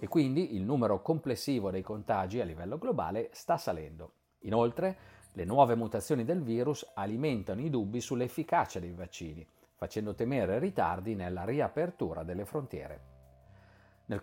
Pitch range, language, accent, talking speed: 95-135 Hz, Italian, native, 135 wpm